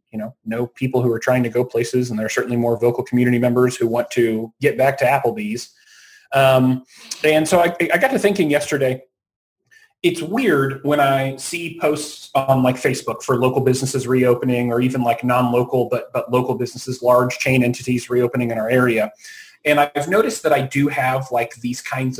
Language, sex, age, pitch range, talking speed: English, male, 30-49, 125-145 Hz, 195 wpm